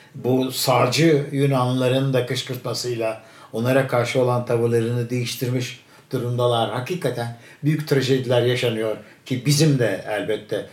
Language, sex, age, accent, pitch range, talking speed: Turkish, male, 60-79, native, 125-180 Hz, 105 wpm